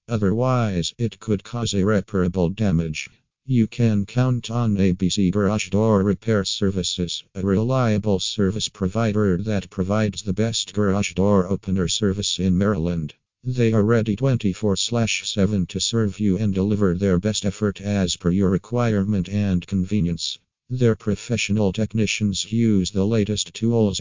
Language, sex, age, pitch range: English, male, 50-69, 95-110 Hz